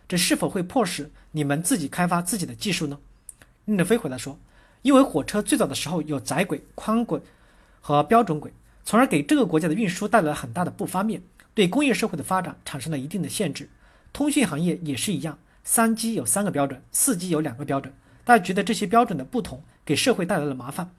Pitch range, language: 145-225 Hz, Chinese